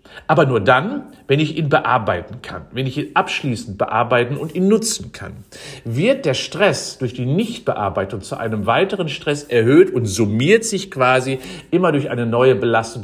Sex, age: male, 50-69